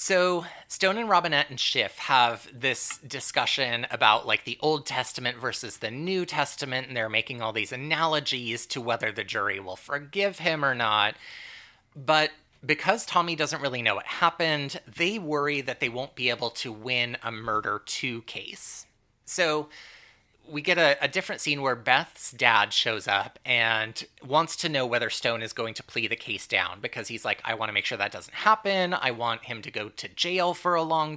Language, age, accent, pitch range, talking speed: English, 30-49, American, 115-155 Hz, 195 wpm